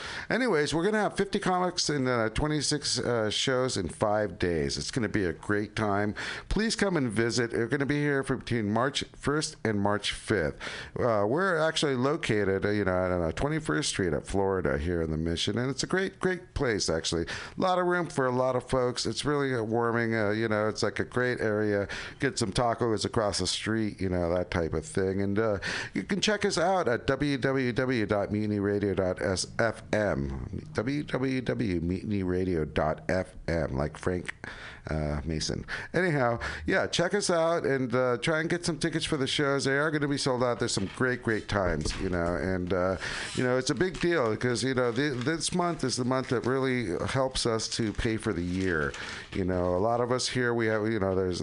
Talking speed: 210 wpm